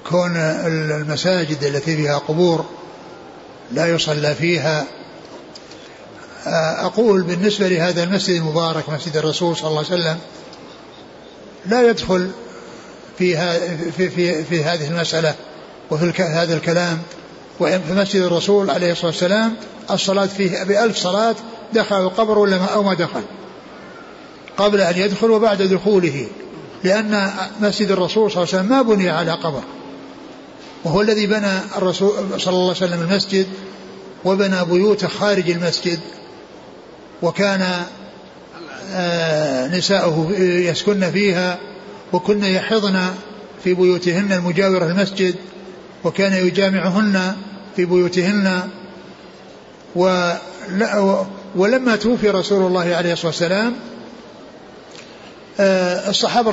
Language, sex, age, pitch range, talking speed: Arabic, male, 60-79, 175-200 Hz, 105 wpm